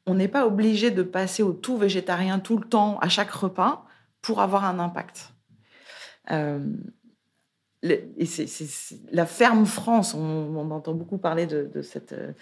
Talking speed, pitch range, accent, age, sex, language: 175 wpm, 150-220 Hz, French, 30-49, female, French